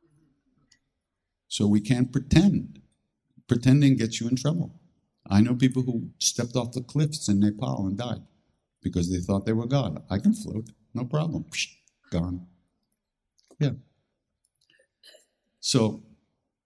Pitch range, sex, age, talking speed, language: 95-125 Hz, male, 60-79, 125 wpm, English